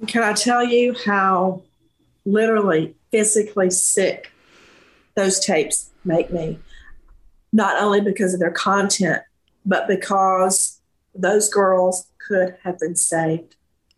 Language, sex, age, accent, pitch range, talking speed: English, female, 50-69, American, 185-235 Hz, 110 wpm